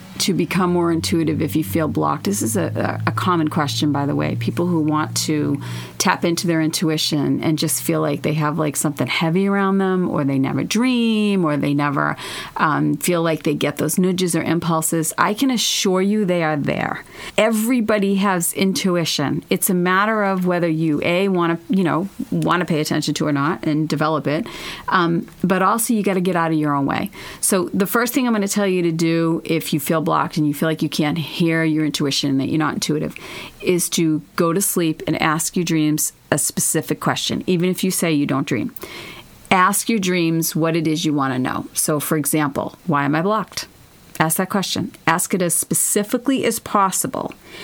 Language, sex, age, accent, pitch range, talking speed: English, female, 40-59, American, 155-190 Hz, 210 wpm